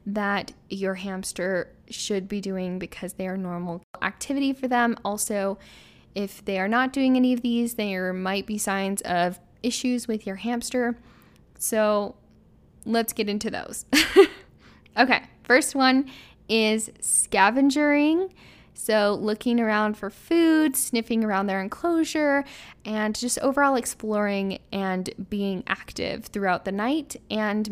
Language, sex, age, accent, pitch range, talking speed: English, female, 10-29, American, 200-245 Hz, 130 wpm